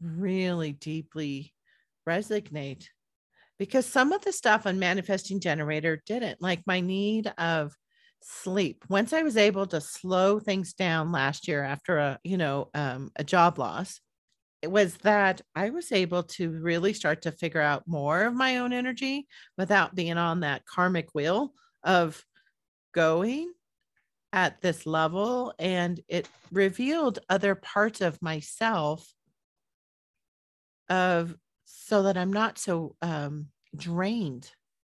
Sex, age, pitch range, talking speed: female, 40-59, 160-200 Hz, 135 wpm